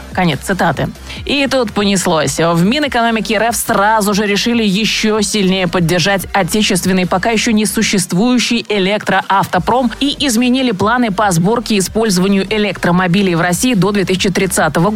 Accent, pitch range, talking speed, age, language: native, 180-220 Hz, 130 wpm, 20-39, Russian